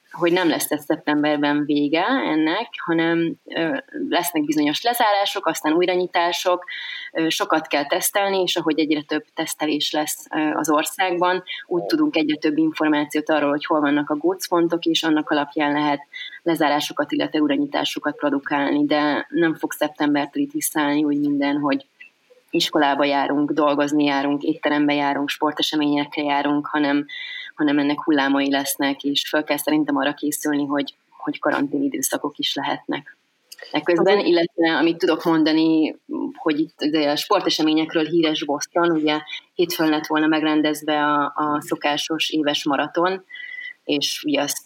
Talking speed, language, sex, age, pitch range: 135 wpm, Hungarian, female, 20-39, 150-180 Hz